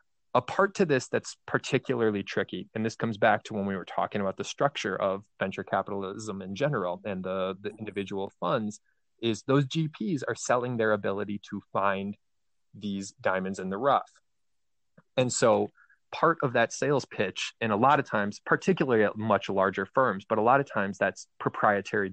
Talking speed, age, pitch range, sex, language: 180 wpm, 20-39, 100-120 Hz, male, English